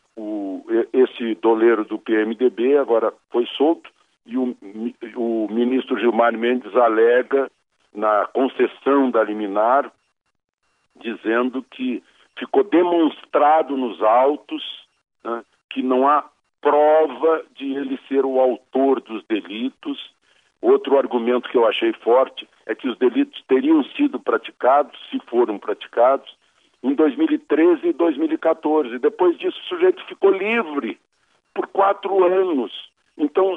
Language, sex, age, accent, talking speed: Portuguese, male, 60-79, Brazilian, 120 wpm